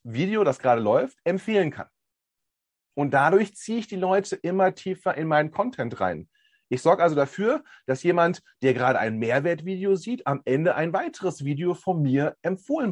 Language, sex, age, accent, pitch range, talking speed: German, male, 30-49, German, 135-190 Hz, 170 wpm